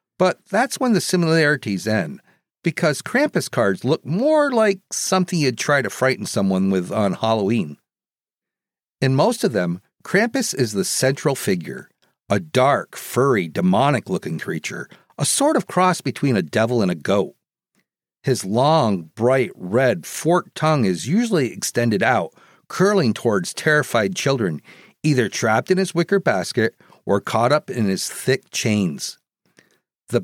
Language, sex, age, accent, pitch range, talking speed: English, male, 50-69, American, 120-195 Hz, 145 wpm